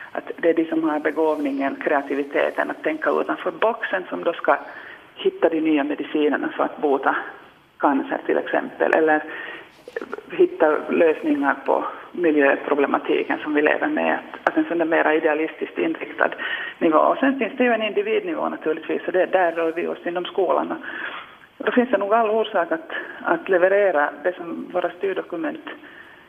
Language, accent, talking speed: Finnish, native, 160 wpm